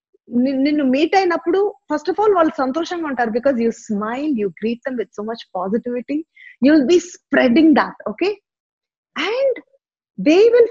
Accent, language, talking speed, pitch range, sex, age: native, Telugu, 175 wpm, 205-305 Hz, female, 30-49